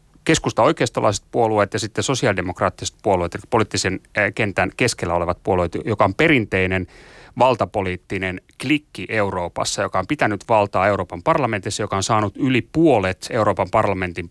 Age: 30-49